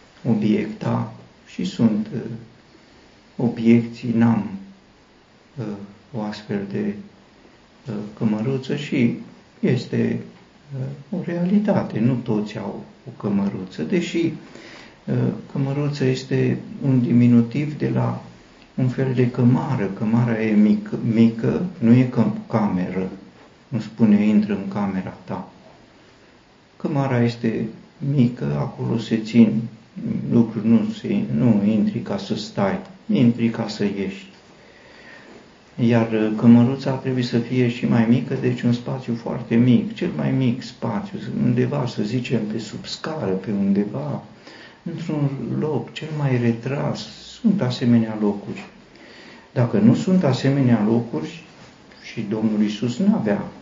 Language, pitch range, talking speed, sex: Romanian, 110-135 Hz, 120 wpm, male